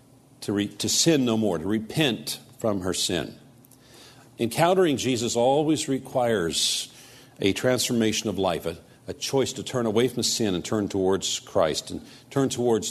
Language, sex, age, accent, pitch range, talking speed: English, male, 50-69, American, 105-130 Hz, 160 wpm